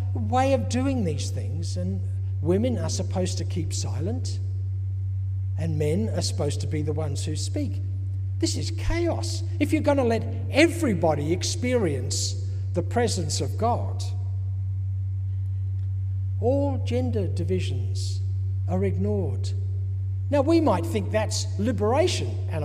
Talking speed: 125 wpm